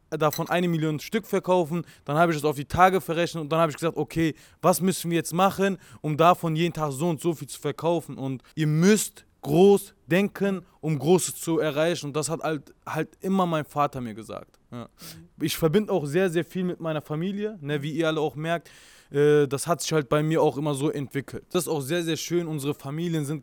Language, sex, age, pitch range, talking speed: German, male, 20-39, 150-175 Hz, 230 wpm